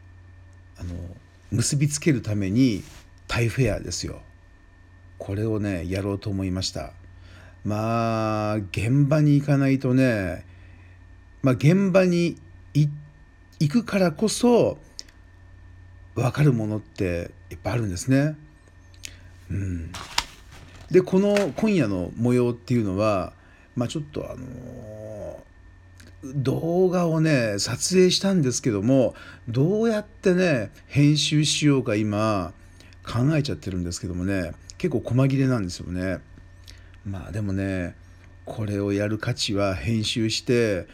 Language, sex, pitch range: Japanese, male, 90-130 Hz